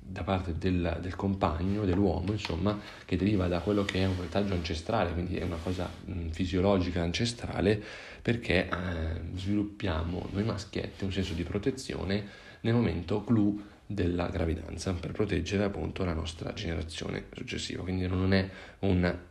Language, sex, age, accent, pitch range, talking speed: Italian, male, 40-59, native, 85-100 Hz, 150 wpm